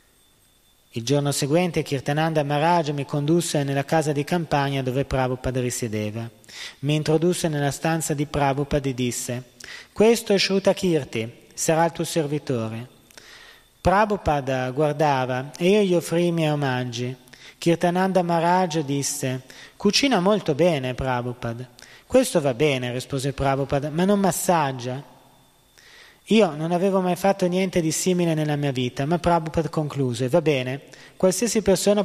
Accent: native